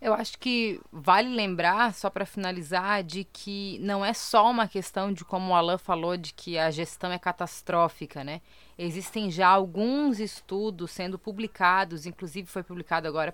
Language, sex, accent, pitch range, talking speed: Portuguese, female, Brazilian, 175-210 Hz, 165 wpm